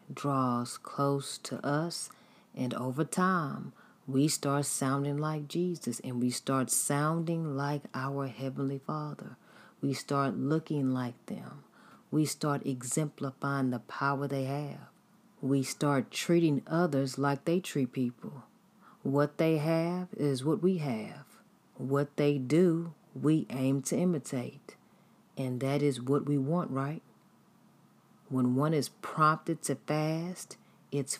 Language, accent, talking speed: English, American, 130 wpm